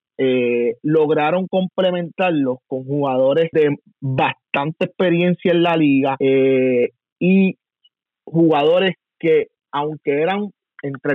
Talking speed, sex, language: 95 wpm, male, Spanish